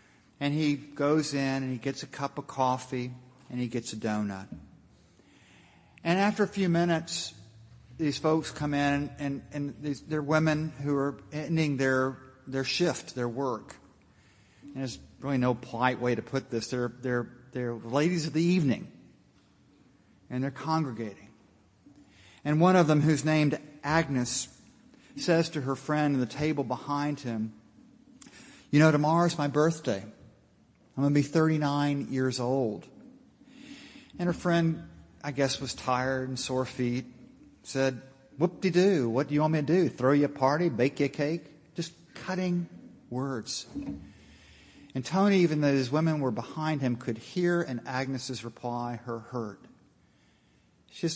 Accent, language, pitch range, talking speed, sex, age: American, English, 125-155 Hz, 155 wpm, male, 50-69